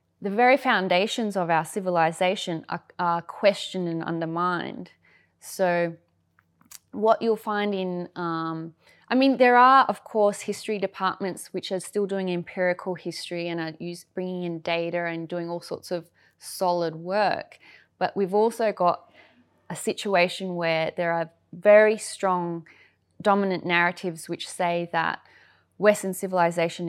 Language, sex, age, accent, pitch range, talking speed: English, female, 20-39, Australian, 170-200 Hz, 135 wpm